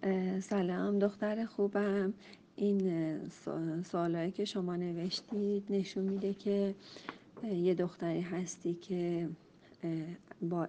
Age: 40-59